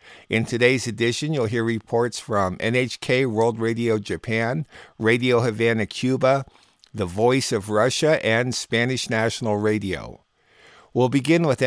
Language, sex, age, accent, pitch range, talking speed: English, male, 50-69, American, 110-125 Hz, 130 wpm